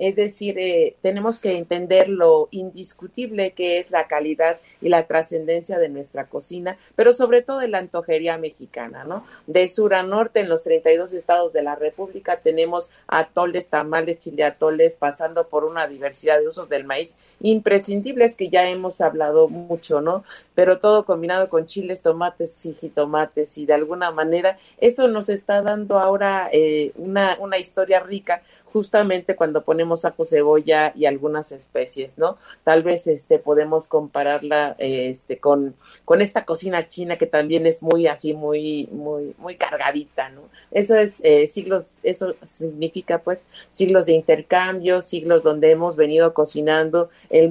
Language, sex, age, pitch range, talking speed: Spanish, female, 50-69, 155-190 Hz, 155 wpm